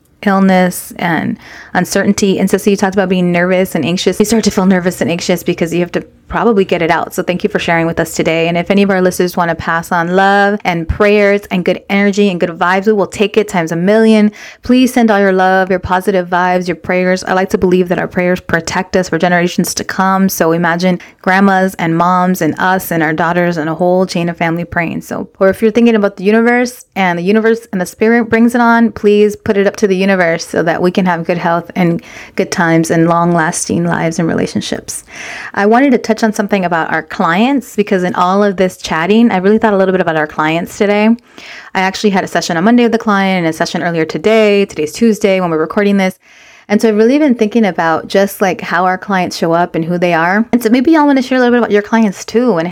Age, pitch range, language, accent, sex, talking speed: 20-39, 175-220 Hz, English, American, female, 250 wpm